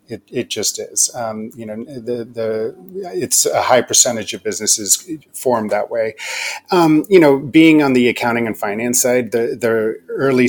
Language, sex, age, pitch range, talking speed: English, male, 30-49, 105-125 Hz, 175 wpm